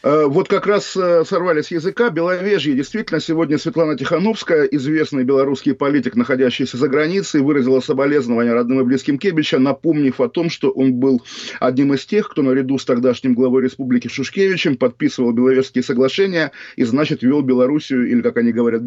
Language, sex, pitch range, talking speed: Russian, male, 135-170 Hz, 155 wpm